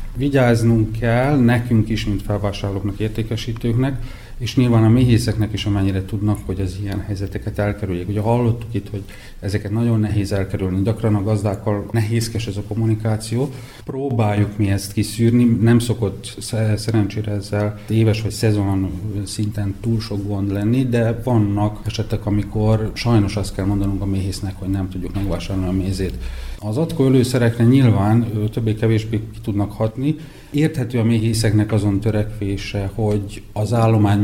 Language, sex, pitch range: Hungarian, male, 100-115 Hz